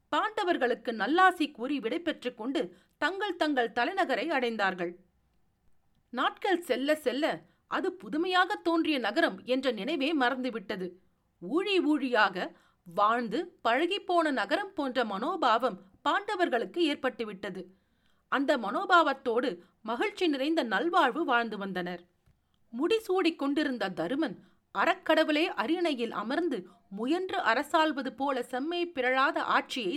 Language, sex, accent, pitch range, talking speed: Tamil, female, native, 230-335 Hz, 95 wpm